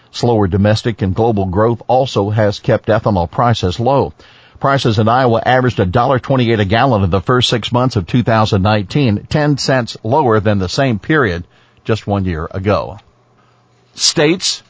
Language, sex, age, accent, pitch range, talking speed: English, male, 50-69, American, 110-145 Hz, 150 wpm